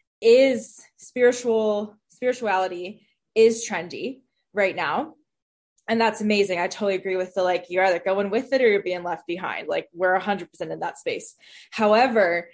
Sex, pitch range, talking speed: female, 185-225 Hz, 170 wpm